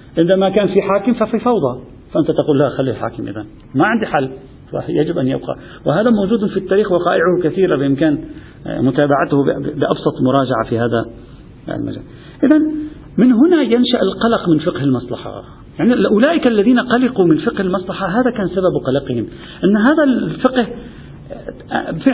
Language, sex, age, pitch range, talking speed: Arabic, male, 50-69, 135-230 Hz, 145 wpm